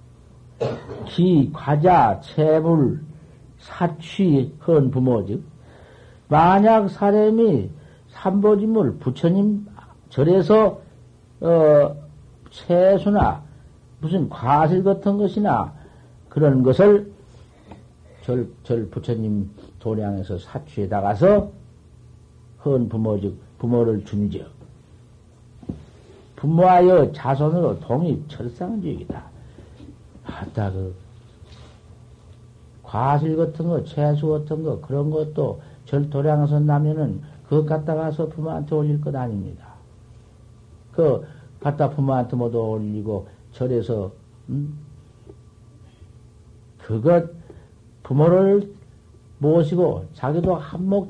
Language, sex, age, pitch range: Korean, male, 60-79, 115-155 Hz